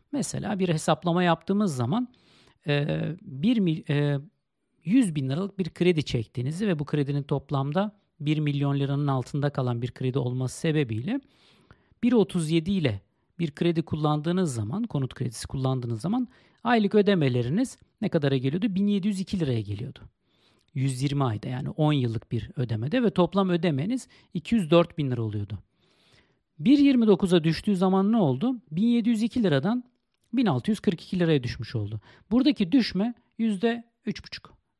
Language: Turkish